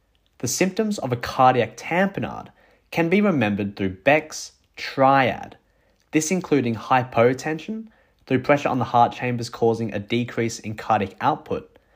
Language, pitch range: English, 120-165 Hz